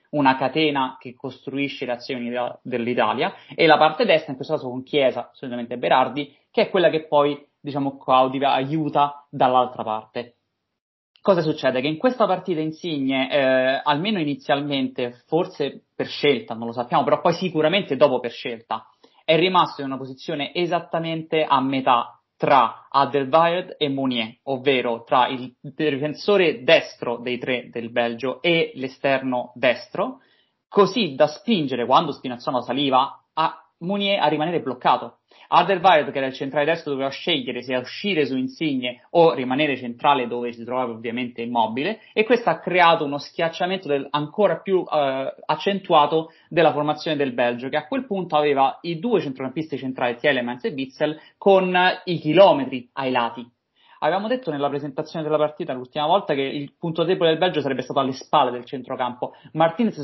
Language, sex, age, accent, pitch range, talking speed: Italian, male, 30-49, native, 130-160 Hz, 155 wpm